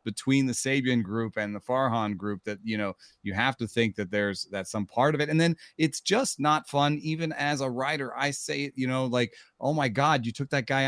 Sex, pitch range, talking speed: male, 110-140 Hz, 250 wpm